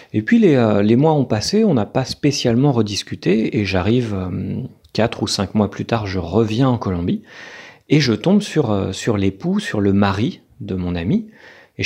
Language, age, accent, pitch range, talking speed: French, 40-59, French, 100-130 Hz, 185 wpm